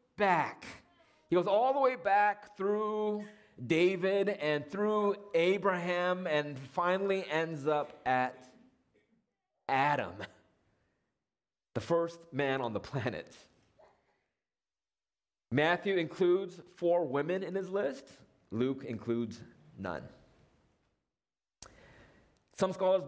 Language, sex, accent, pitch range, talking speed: English, male, American, 140-195 Hz, 95 wpm